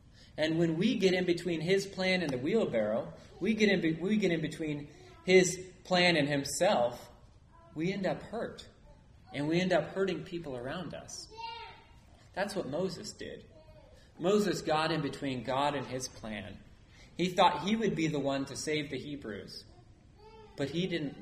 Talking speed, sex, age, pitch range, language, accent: 165 wpm, male, 30-49, 115-170 Hz, English, American